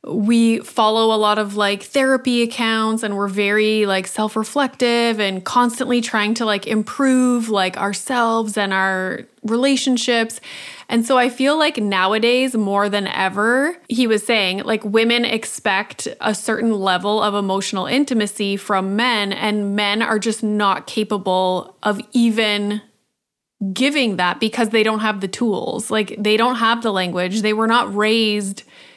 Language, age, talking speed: English, 20-39, 155 wpm